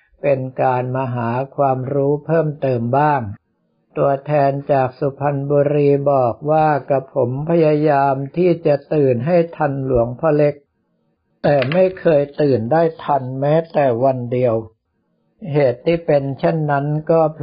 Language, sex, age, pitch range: Thai, male, 60-79, 130-150 Hz